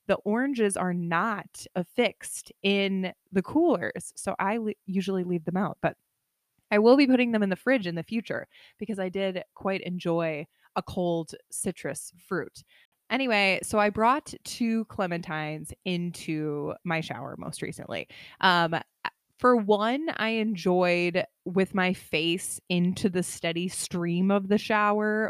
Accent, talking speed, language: American, 145 wpm, English